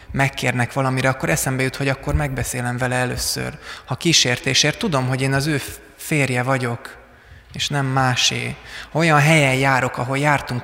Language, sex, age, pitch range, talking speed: Hungarian, male, 20-39, 120-140 Hz, 160 wpm